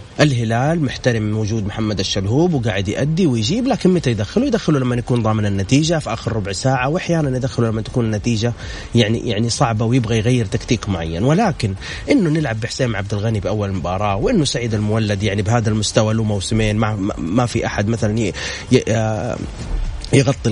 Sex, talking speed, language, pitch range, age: male, 160 wpm, Arabic, 105-130 Hz, 30-49